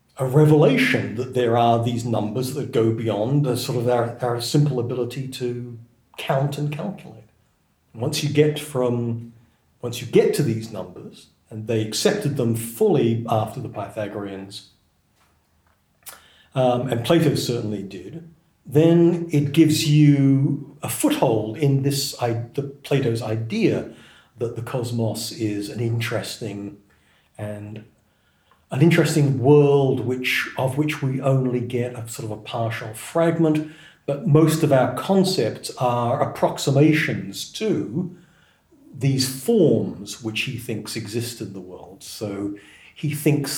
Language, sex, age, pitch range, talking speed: English, male, 40-59, 115-150 Hz, 135 wpm